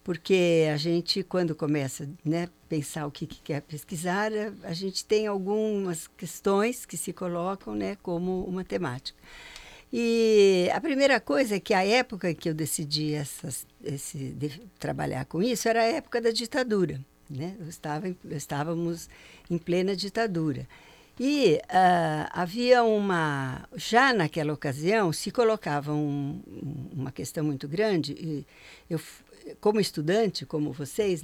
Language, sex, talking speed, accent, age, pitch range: Portuguese, female, 145 wpm, Brazilian, 60-79, 160-220 Hz